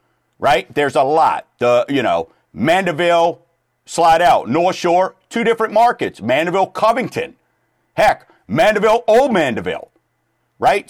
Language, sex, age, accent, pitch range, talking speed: English, male, 50-69, American, 130-180 Hz, 120 wpm